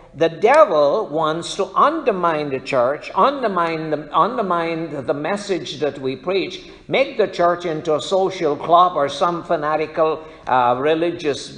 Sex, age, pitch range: male, 60-79, 145-190 Hz